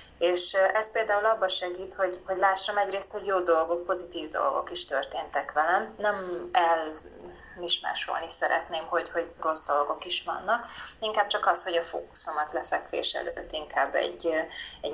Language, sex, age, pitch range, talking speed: Hungarian, female, 20-39, 165-195 Hz, 150 wpm